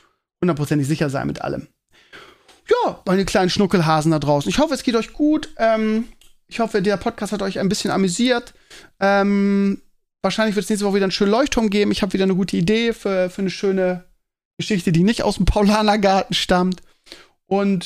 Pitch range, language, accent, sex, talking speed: 170-215 Hz, German, German, male, 190 wpm